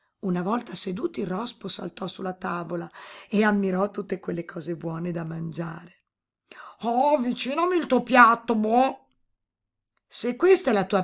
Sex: female